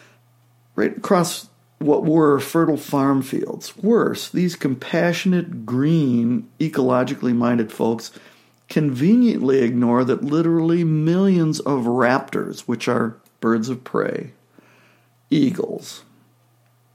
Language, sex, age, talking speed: English, male, 60-79, 90 wpm